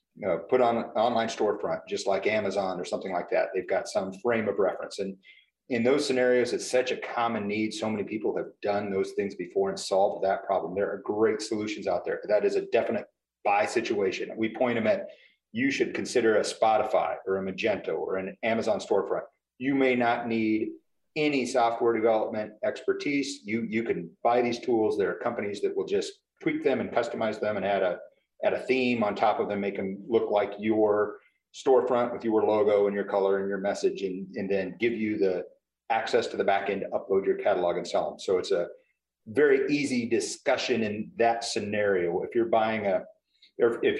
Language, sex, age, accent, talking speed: English, male, 40-59, American, 205 wpm